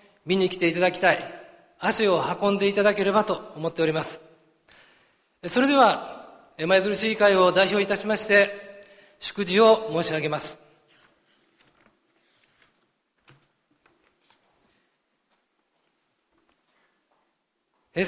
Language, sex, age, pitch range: Japanese, male, 40-59, 180-220 Hz